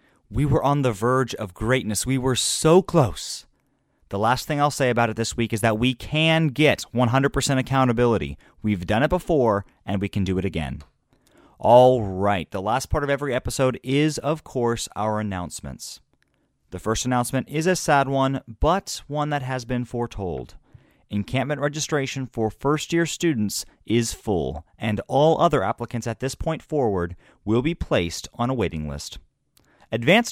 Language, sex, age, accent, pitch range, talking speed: English, male, 30-49, American, 110-145 Hz, 170 wpm